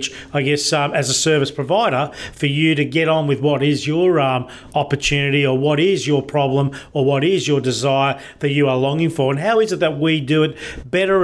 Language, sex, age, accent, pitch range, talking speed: English, male, 40-59, Australian, 140-165 Hz, 225 wpm